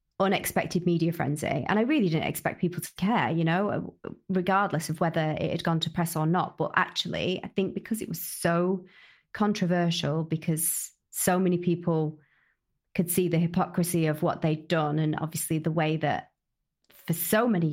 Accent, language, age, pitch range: British, English, 30-49, 165-190 Hz